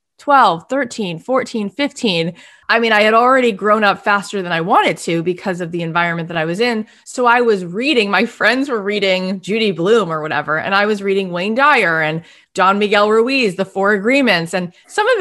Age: 20-39